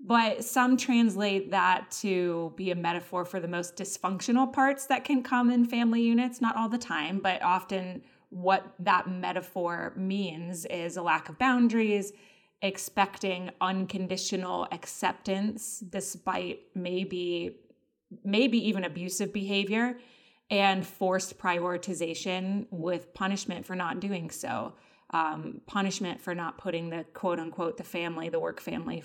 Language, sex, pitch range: English, female, 175-205 Hz